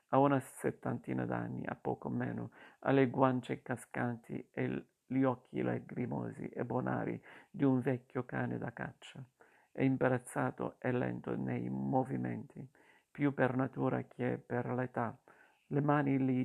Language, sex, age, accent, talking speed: Italian, male, 50-69, native, 140 wpm